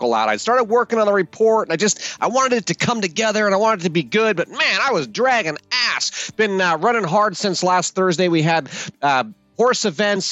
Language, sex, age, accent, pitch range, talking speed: English, male, 30-49, American, 145-205 Hz, 240 wpm